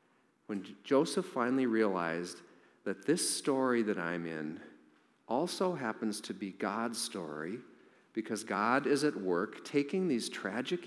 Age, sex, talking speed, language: 50-69, male, 130 wpm, English